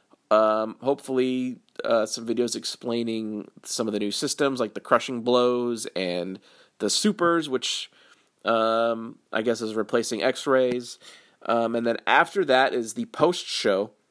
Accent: American